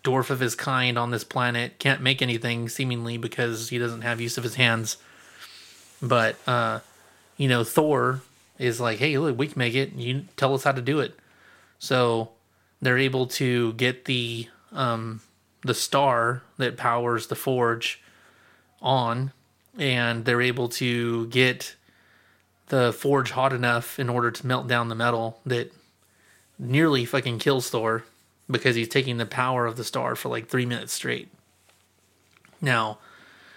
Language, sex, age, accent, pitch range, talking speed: English, male, 30-49, American, 115-135 Hz, 155 wpm